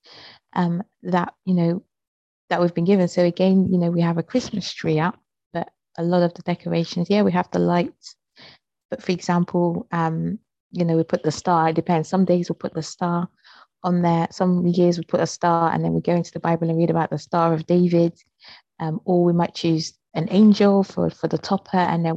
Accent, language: British, English